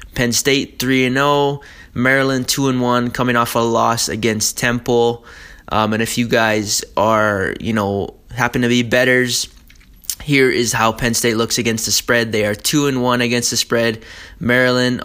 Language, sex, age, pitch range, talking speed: English, male, 20-39, 110-125 Hz, 180 wpm